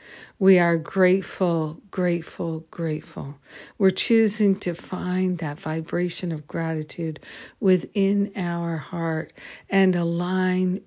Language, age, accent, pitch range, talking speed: English, 60-79, American, 165-185 Hz, 100 wpm